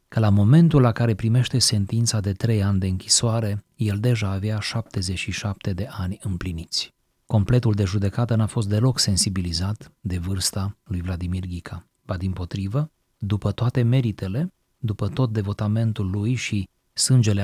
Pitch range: 95-120 Hz